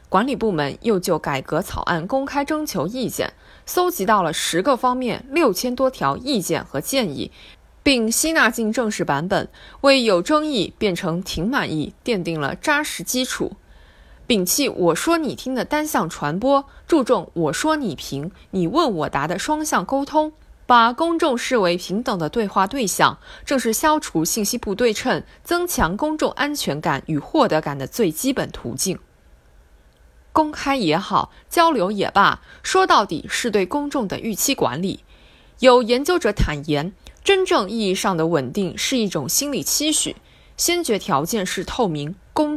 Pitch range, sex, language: 175-280 Hz, female, Chinese